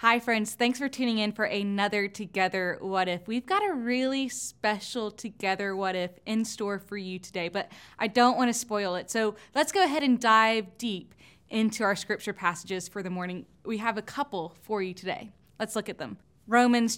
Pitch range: 190-250 Hz